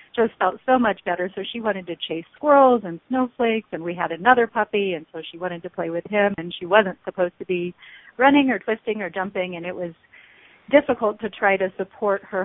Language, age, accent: English, 40-59, American